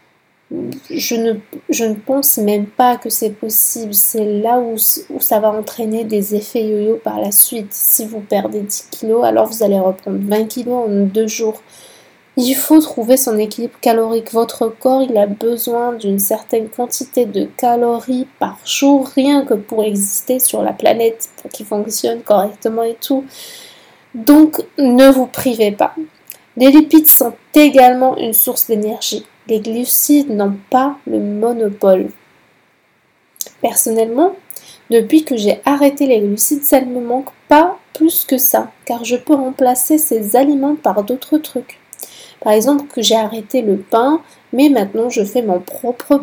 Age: 20-39